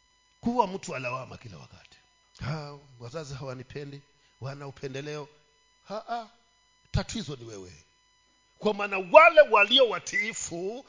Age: 50-69